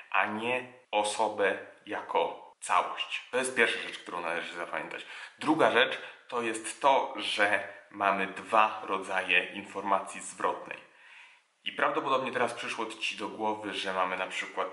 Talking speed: 140 wpm